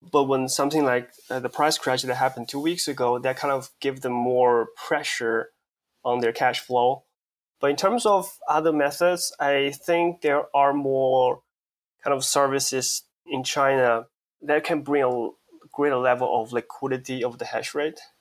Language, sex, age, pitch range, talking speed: English, male, 20-39, 125-145 Hz, 170 wpm